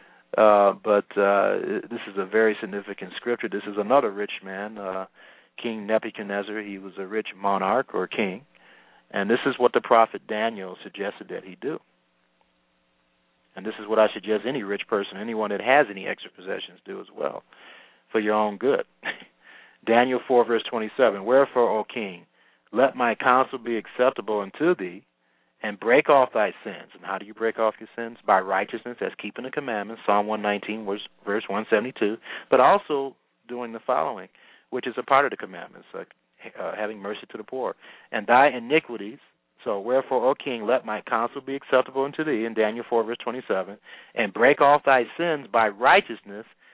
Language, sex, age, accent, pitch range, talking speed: English, male, 40-59, American, 100-135 Hz, 180 wpm